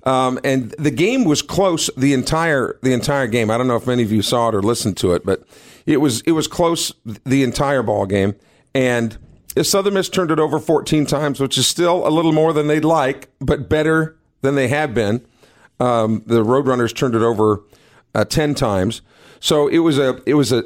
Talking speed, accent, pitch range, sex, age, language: 210 wpm, American, 120-155 Hz, male, 50-69, English